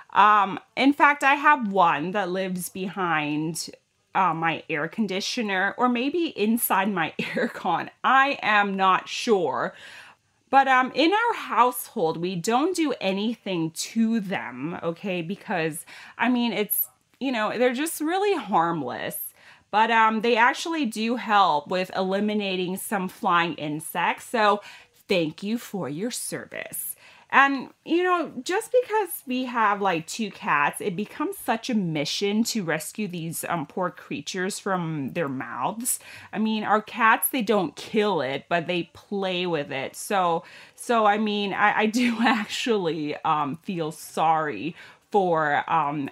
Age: 30-49